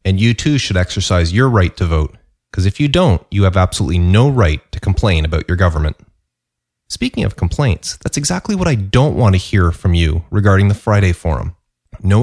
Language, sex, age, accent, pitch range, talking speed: English, male, 30-49, American, 95-130 Hz, 200 wpm